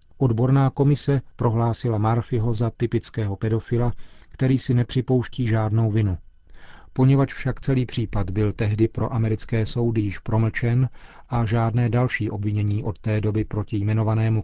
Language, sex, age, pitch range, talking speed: Czech, male, 40-59, 105-125 Hz, 135 wpm